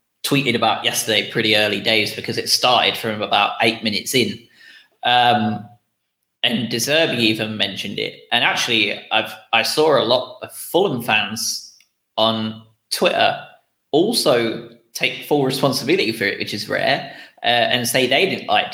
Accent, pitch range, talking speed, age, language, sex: British, 110-125 Hz, 155 wpm, 20-39, English, male